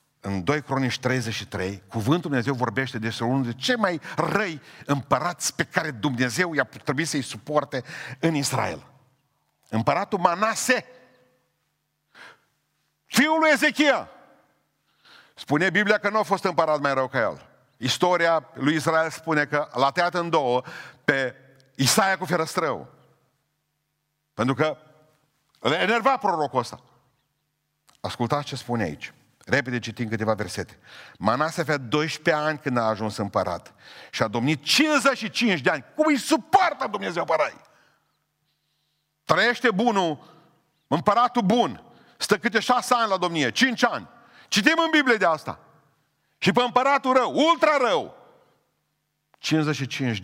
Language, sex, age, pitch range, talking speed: Romanian, male, 50-69, 130-205 Hz, 130 wpm